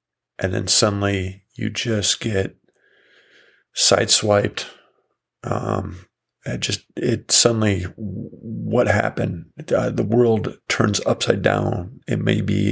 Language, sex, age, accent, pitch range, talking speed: English, male, 40-59, American, 95-115 Hz, 110 wpm